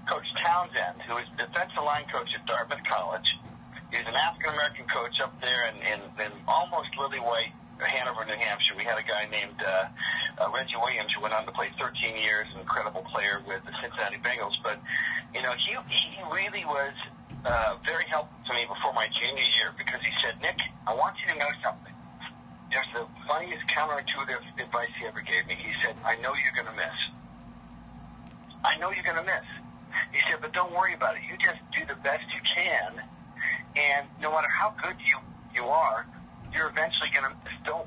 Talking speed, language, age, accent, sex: 200 wpm, English, 50-69, American, male